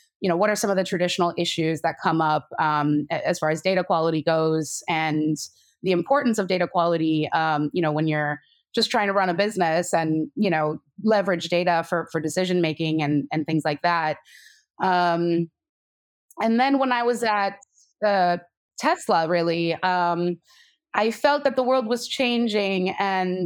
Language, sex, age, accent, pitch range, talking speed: English, female, 20-39, American, 165-210 Hz, 175 wpm